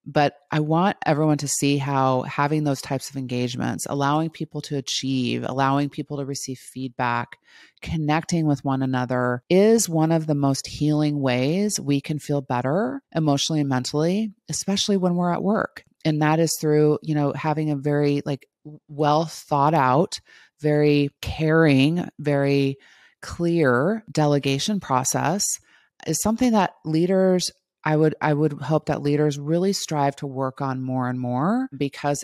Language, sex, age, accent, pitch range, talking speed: English, female, 30-49, American, 135-160 Hz, 155 wpm